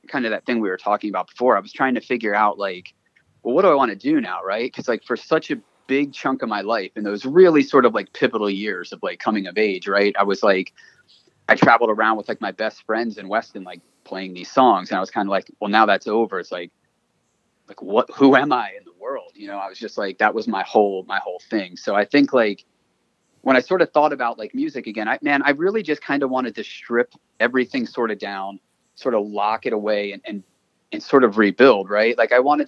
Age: 30-49